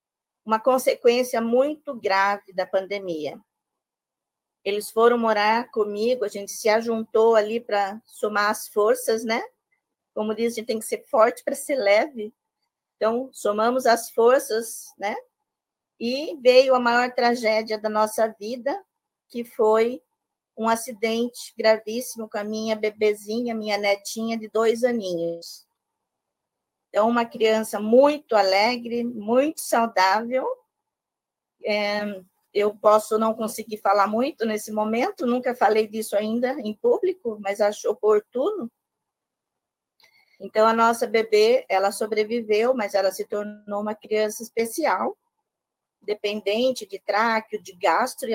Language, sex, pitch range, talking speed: Portuguese, female, 210-250 Hz, 125 wpm